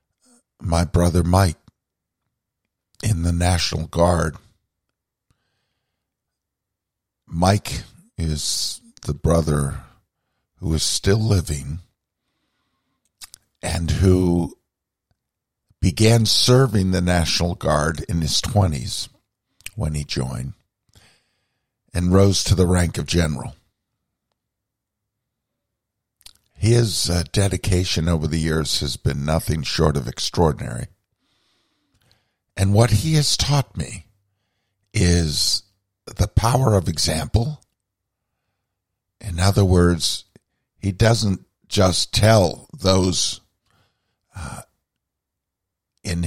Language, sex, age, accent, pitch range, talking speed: English, male, 50-69, American, 85-105 Hz, 90 wpm